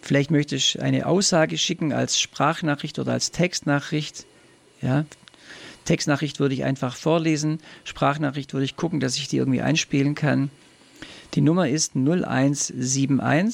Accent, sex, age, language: German, male, 50-69, German